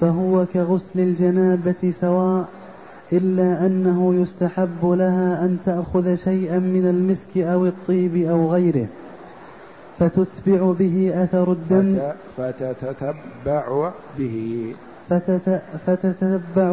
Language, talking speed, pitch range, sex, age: Arabic, 80 wpm, 180-190 Hz, male, 30-49